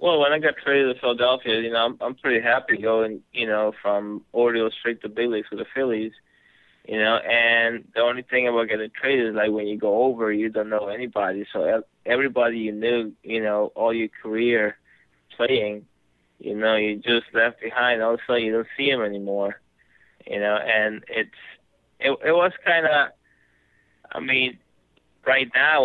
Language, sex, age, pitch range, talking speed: English, male, 20-39, 105-120 Hz, 185 wpm